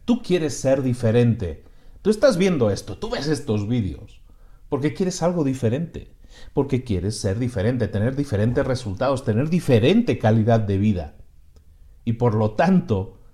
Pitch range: 110-160 Hz